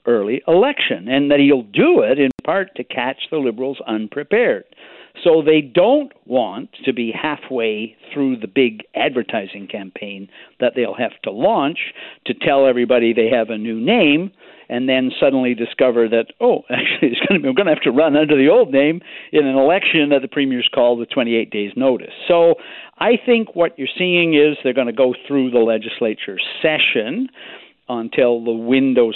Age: 60-79